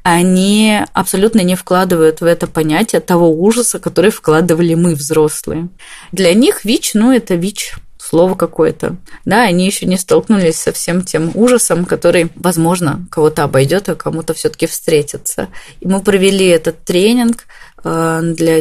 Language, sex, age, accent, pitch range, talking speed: Russian, female, 20-39, native, 165-200 Hz, 140 wpm